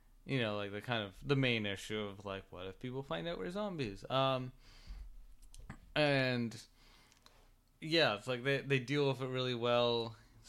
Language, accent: English, American